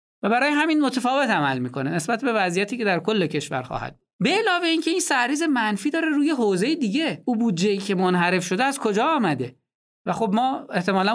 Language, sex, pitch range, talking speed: Persian, male, 160-250 Hz, 200 wpm